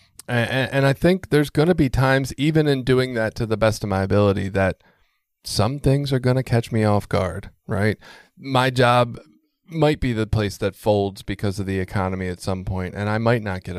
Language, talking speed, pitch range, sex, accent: English, 215 wpm, 100-125 Hz, male, American